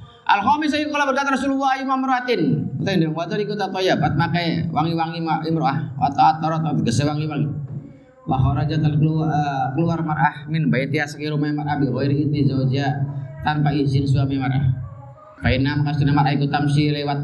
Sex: male